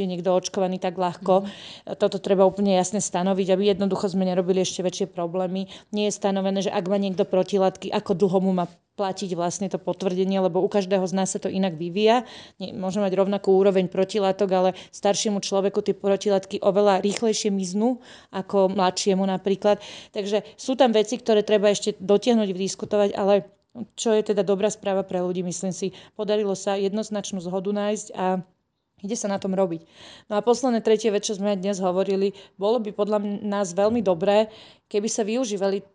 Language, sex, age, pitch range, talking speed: Slovak, female, 30-49, 190-215 Hz, 180 wpm